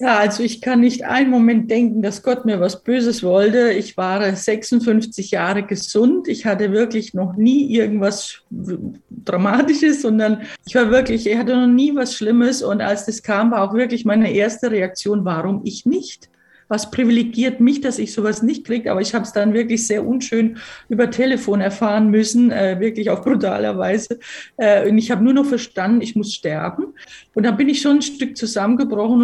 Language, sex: German, female